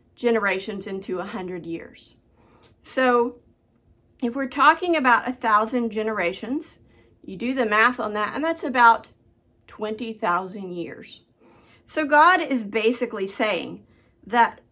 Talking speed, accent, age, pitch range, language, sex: 120 wpm, American, 50-69, 215-275 Hz, English, female